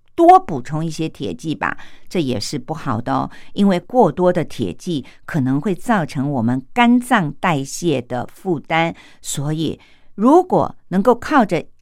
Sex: female